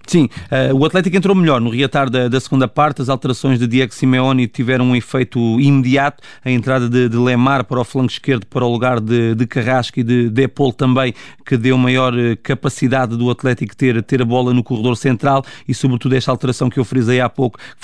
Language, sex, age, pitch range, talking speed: Portuguese, male, 30-49, 125-135 Hz, 210 wpm